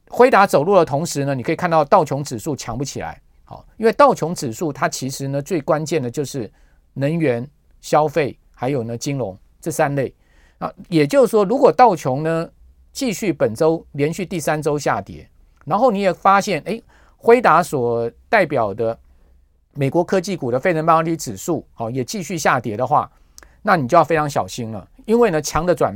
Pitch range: 115-170 Hz